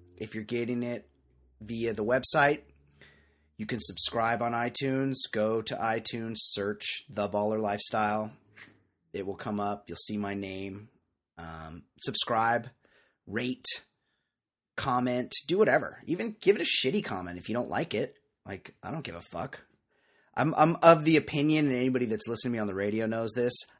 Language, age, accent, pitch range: English, 30-49, American, 100-135 Hz